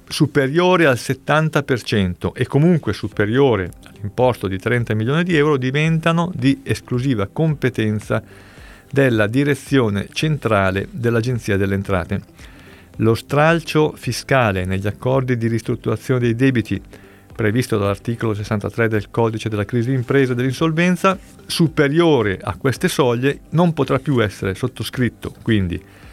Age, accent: 50-69, native